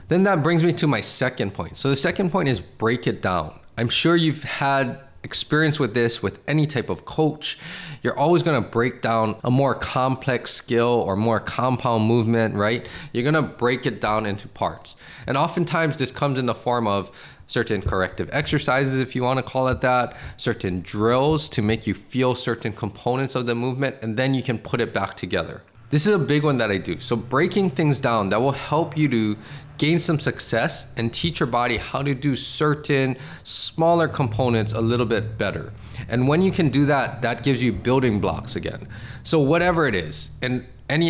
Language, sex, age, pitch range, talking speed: English, male, 20-39, 110-145 Hz, 200 wpm